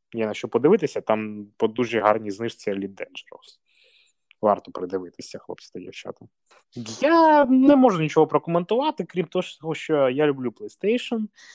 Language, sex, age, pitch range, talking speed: Ukrainian, male, 20-39, 115-195 Hz, 140 wpm